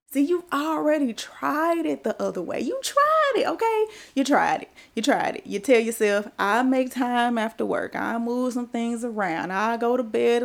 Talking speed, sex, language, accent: 200 wpm, female, English, American